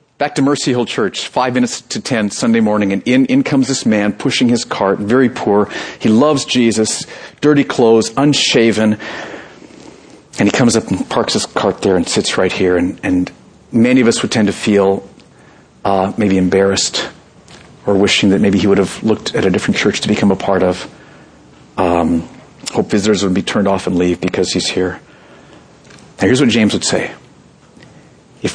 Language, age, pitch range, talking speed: English, 40-59, 100-140 Hz, 185 wpm